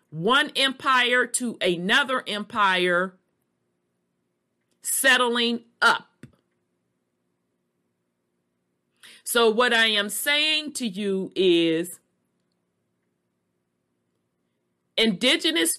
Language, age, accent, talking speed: English, 40-59, American, 60 wpm